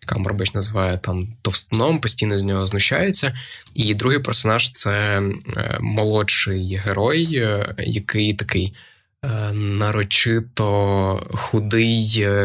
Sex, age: male, 20-39